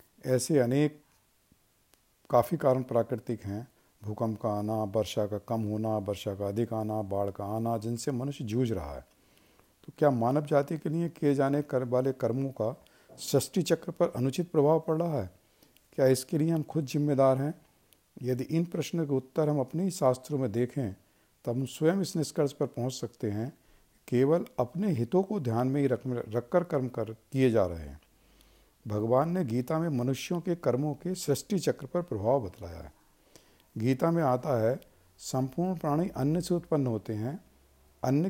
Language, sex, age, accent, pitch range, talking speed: Hindi, male, 50-69, native, 110-155 Hz, 170 wpm